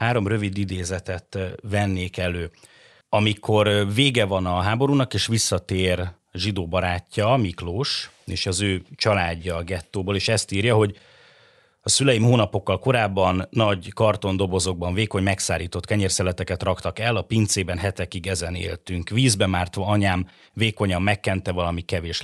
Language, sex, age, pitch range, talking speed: Hungarian, male, 30-49, 90-110 Hz, 130 wpm